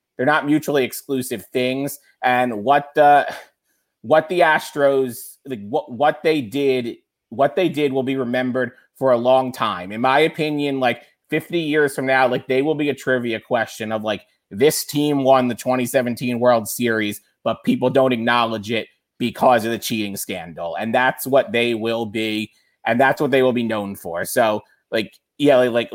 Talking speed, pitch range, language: 180 wpm, 115-135 Hz, English